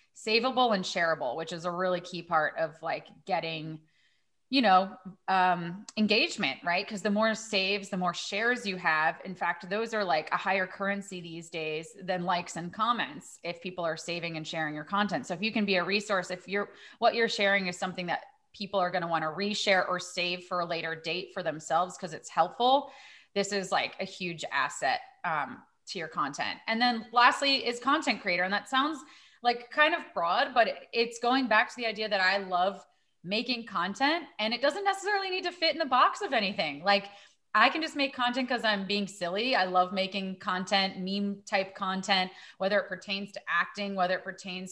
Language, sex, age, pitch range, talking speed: English, female, 30-49, 180-220 Hz, 205 wpm